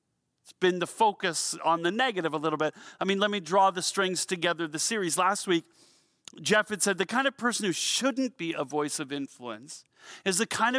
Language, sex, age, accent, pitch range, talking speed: English, male, 40-59, American, 155-200 Hz, 210 wpm